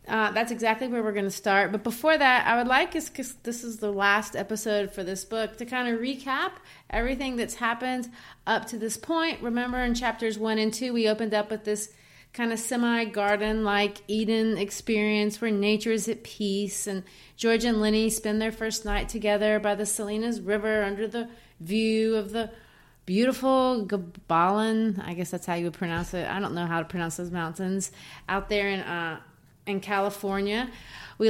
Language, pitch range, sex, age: English, 185-225 Hz, female, 30-49